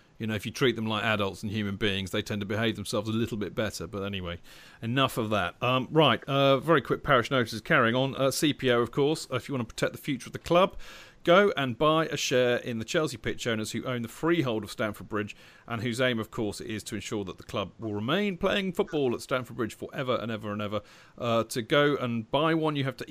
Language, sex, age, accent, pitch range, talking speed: English, male, 40-59, British, 105-140 Hz, 255 wpm